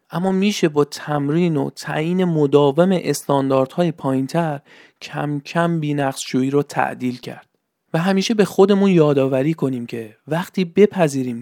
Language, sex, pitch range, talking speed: Persian, male, 135-175 Hz, 125 wpm